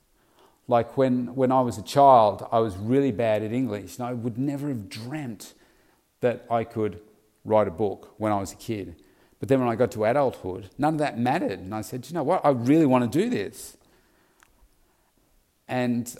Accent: Australian